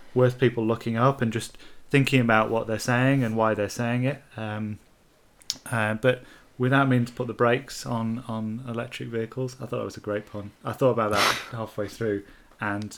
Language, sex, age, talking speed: English, male, 30-49, 200 wpm